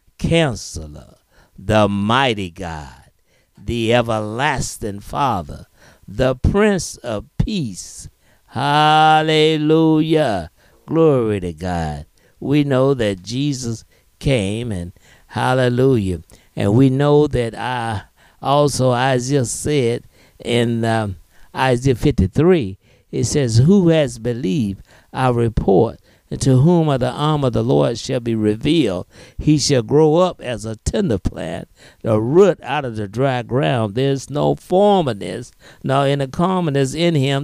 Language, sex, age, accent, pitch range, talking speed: English, male, 60-79, American, 105-155 Hz, 125 wpm